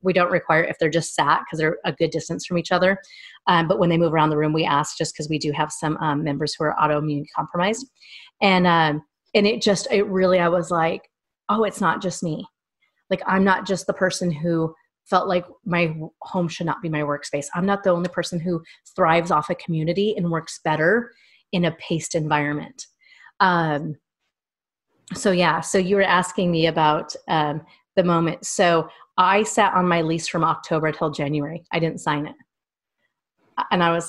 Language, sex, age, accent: English, female, 30-49, American